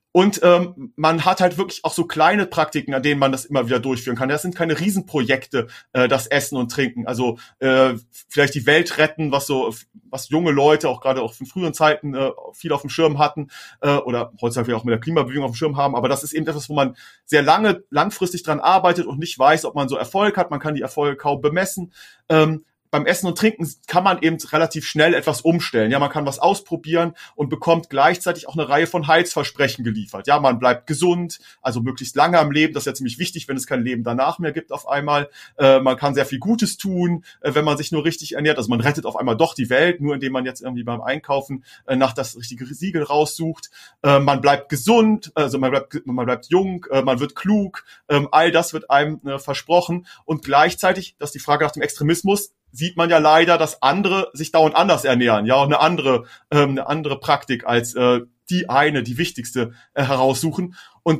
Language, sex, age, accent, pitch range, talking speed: German, male, 40-59, German, 135-165 Hz, 225 wpm